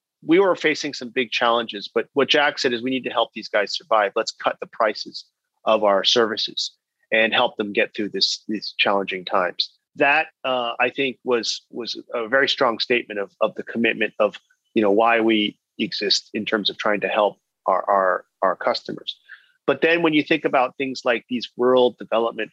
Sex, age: male, 30-49